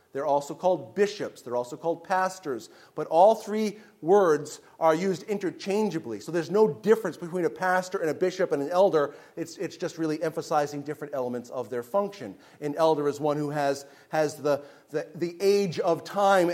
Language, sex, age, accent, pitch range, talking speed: English, male, 40-59, American, 145-180 Hz, 180 wpm